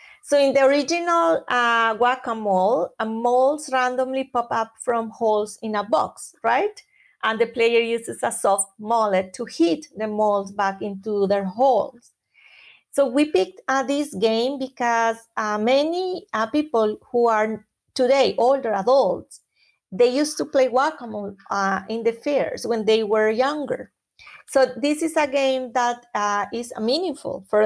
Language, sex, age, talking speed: English, female, 30-49, 155 wpm